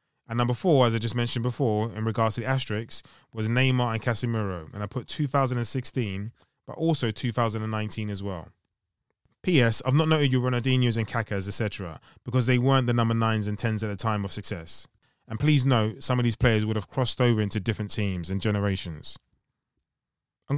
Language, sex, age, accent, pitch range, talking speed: English, male, 20-39, British, 110-135 Hz, 190 wpm